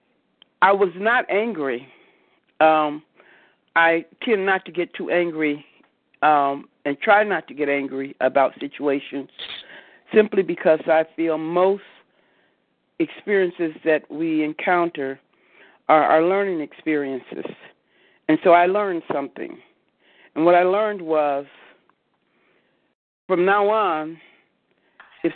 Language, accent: English, American